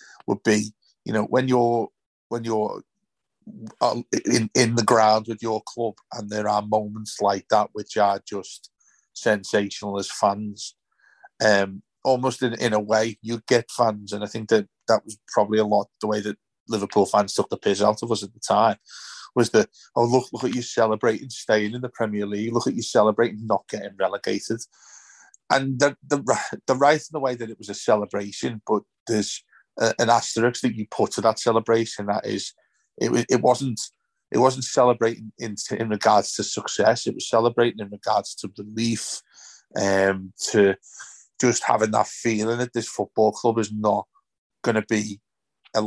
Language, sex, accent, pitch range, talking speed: English, male, British, 105-120 Hz, 180 wpm